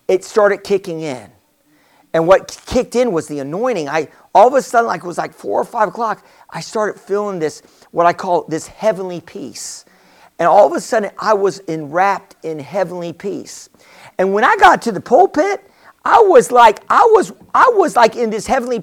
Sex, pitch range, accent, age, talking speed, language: male, 185-250 Hz, American, 50-69, 200 wpm, English